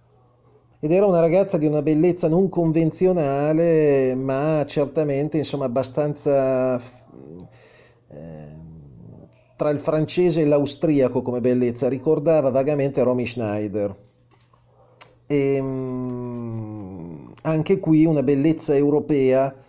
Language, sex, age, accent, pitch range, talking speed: Italian, male, 30-49, native, 120-145 Hz, 90 wpm